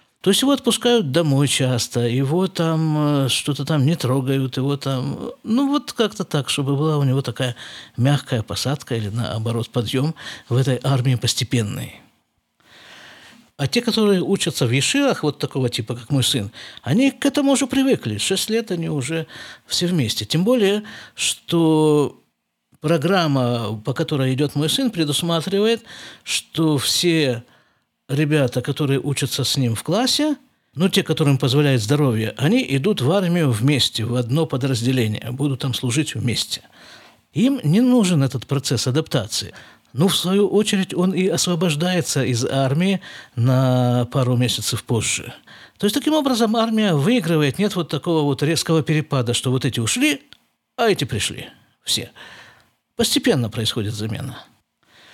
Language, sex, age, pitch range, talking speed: Russian, male, 50-69, 130-185 Hz, 145 wpm